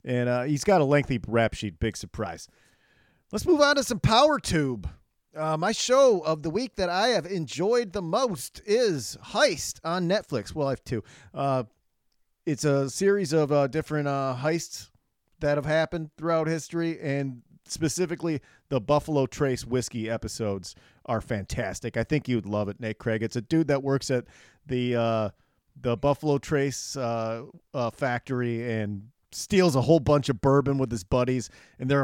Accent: American